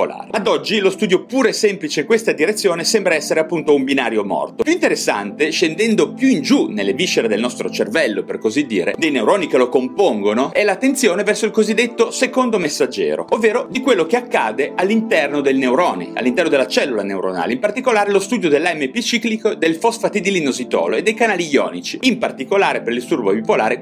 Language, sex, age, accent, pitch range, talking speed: Italian, male, 30-49, native, 190-255 Hz, 180 wpm